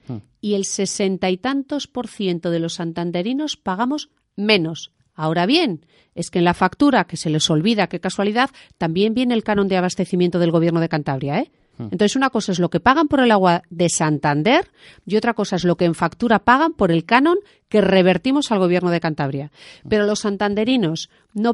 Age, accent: 40-59, Spanish